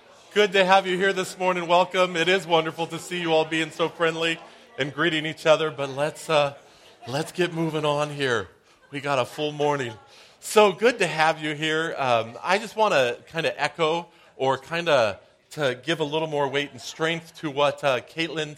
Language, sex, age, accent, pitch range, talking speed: English, male, 40-59, American, 115-155 Hz, 205 wpm